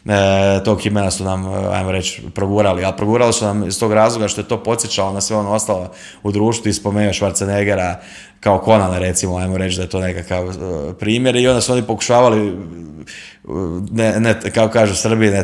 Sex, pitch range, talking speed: male, 95-110 Hz, 180 wpm